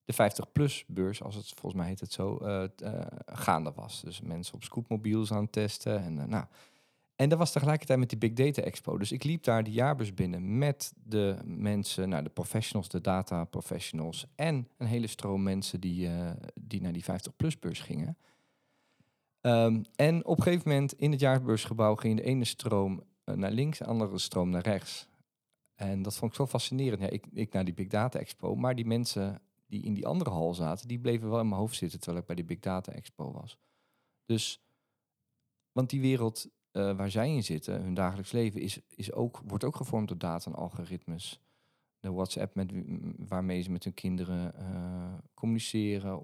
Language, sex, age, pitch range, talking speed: Dutch, male, 40-59, 95-125 Hz, 195 wpm